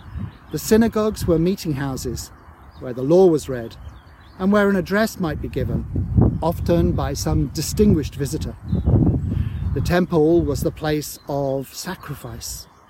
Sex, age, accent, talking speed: male, 50-69, British, 135 wpm